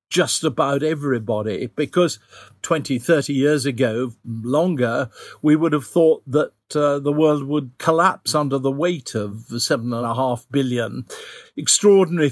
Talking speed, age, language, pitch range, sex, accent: 140 wpm, 50-69, English, 130-160 Hz, male, British